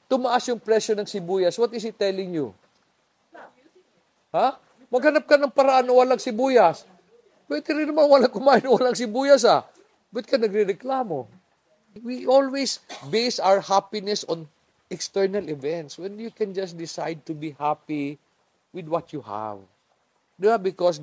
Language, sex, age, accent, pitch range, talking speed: English, male, 50-69, Filipino, 125-205 Hz, 160 wpm